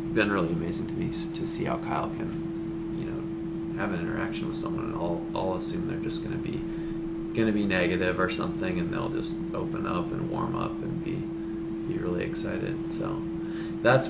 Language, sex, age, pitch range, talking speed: English, male, 20-39, 150-165 Hz, 200 wpm